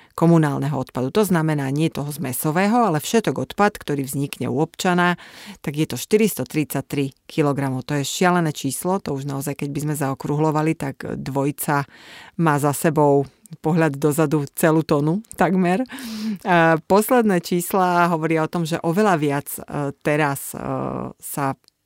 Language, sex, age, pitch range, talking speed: Slovak, female, 30-49, 140-165 Hz, 140 wpm